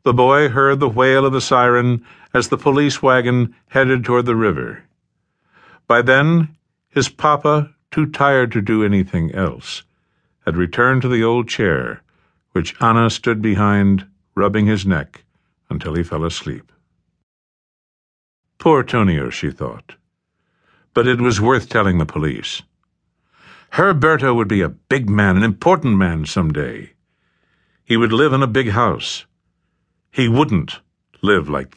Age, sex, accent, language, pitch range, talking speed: 60-79, male, American, English, 100-140 Hz, 140 wpm